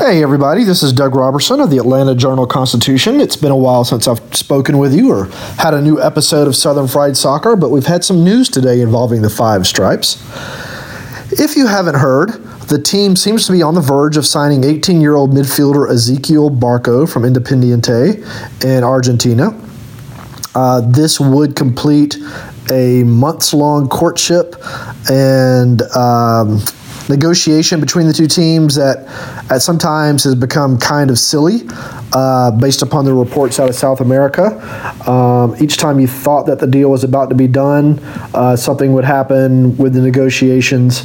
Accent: American